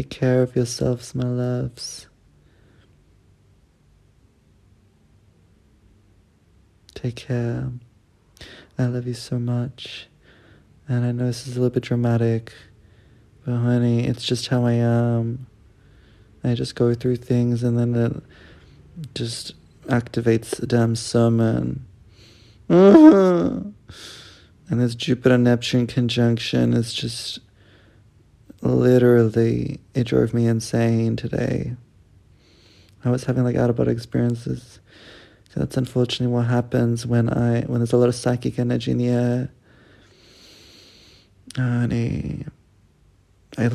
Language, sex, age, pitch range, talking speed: English, male, 20-39, 110-125 Hz, 110 wpm